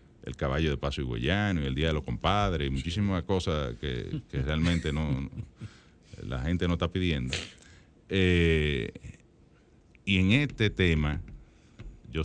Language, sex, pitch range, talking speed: Spanish, male, 70-85 Hz, 135 wpm